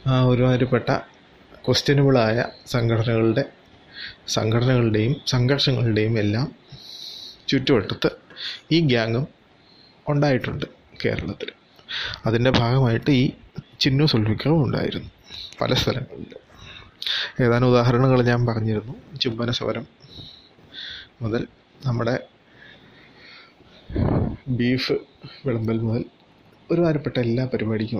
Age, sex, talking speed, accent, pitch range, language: 30-49, male, 70 wpm, native, 115-130 Hz, Malayalam